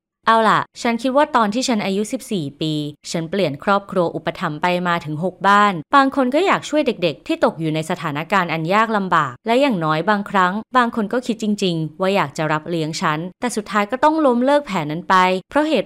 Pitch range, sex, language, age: 170-225 Hz, female, Thai, 20-39